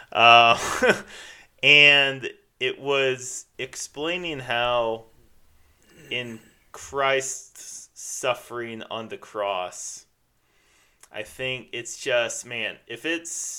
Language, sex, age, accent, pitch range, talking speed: English, male, 30-49, American, 105-140 Hz, 85 wpm